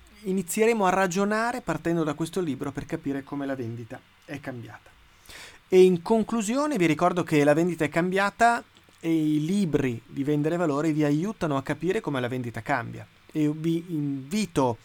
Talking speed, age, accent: 165 wpm, 30-49, native